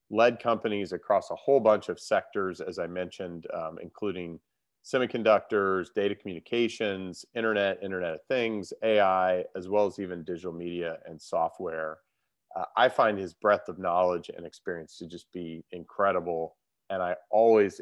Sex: male